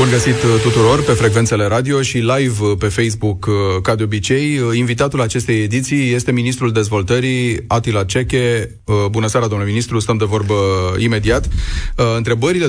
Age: 30-49